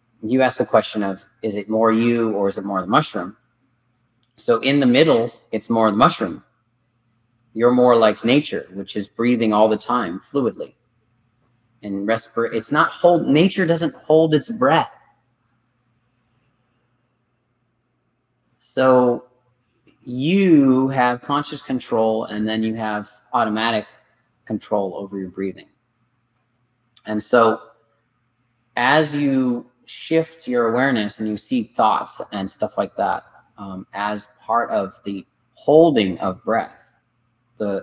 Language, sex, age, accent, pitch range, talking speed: English, male, 30-49, American, 105-125 Hz, 130 wpm